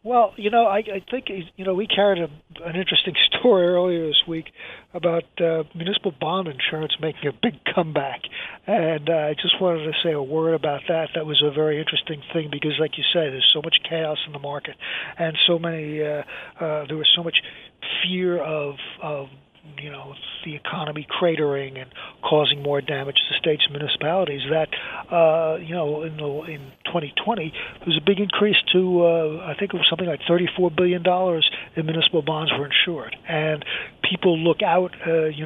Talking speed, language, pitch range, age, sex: 190 wpm, English, 150-175 Hz, 50-69, male